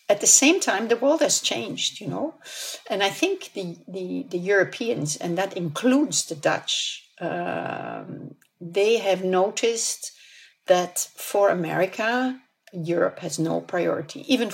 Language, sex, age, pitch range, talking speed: English, female, 50-69, 175-255 Hz, 140 wpm